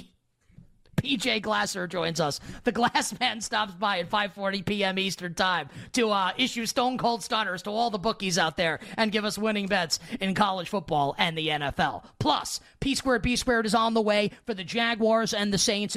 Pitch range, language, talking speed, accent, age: 170-220 Hz, English, 180 wpm, American, 30-49